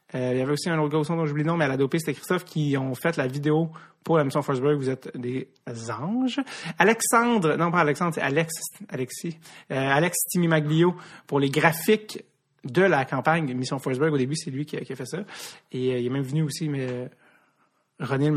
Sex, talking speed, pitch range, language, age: male, 225 wpm, 135-175 Hz, French, 30-49